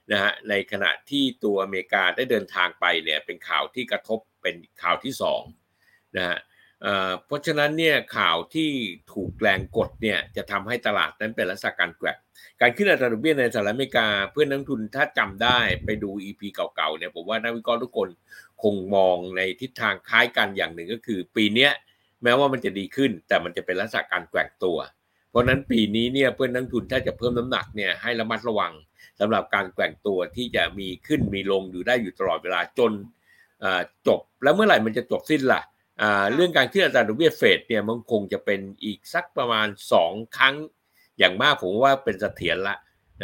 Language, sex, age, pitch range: Thai, male, 60-79, 100-130 Hz